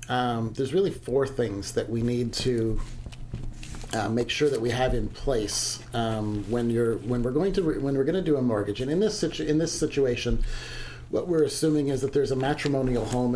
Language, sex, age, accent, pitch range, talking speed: English, male, 40-59, American, 115-135 Hz, 215 wpm